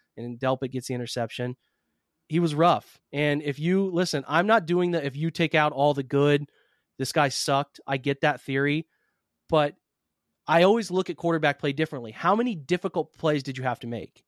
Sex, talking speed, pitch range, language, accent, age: male, 200 wpm, 145-180 Hz, English, American, 30-49